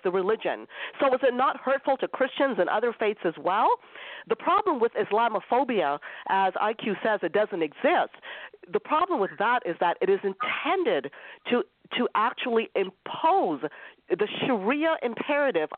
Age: 50-69